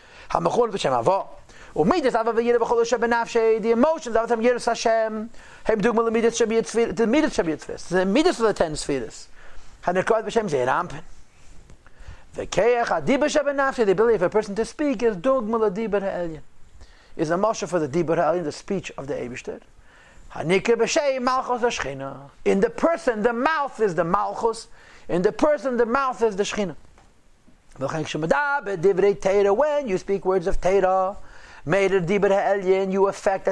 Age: 50-69